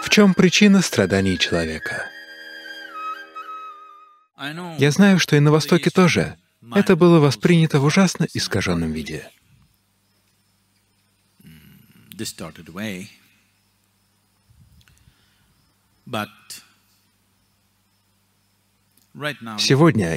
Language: Russian